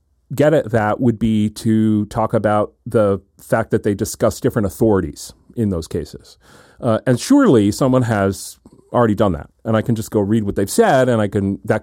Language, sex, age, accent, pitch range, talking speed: English, male, 40-59, American, 100-125 Hz, 200 wpm